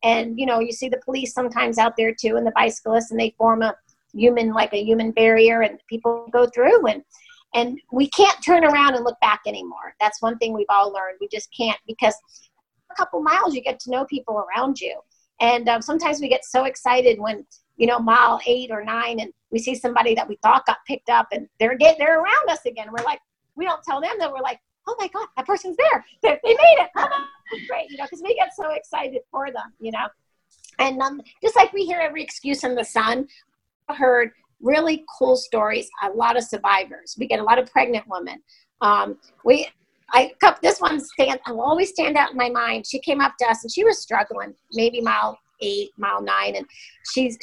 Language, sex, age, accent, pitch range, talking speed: English, female, 40-59, American, 225-300 Hz, 220 wpm